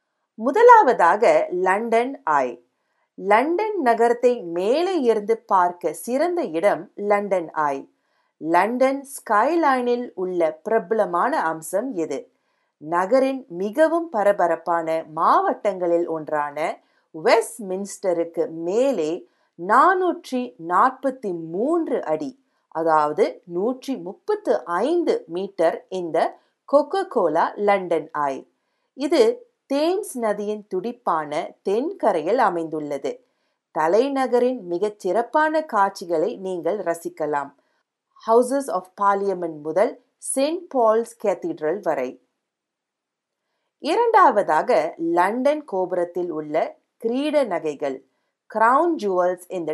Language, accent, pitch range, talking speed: Tamil, native, 170-265 Hz, 80 wpm